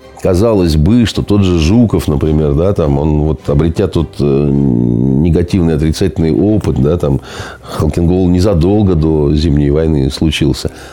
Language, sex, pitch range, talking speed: Russian, male, 75-105 Hz, 130 wpm